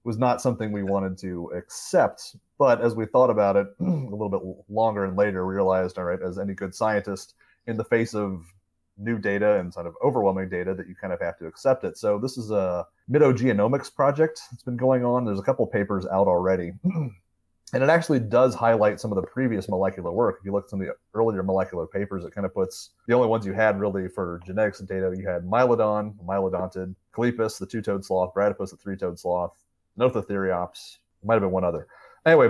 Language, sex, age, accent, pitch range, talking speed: English, male, 30-49, American, 95-115 Hz, 215 wpm